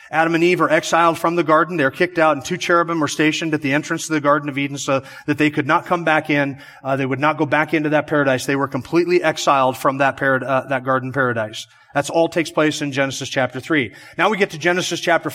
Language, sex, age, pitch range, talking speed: English, male, 30-49, 150-180 Hz, 265 wpm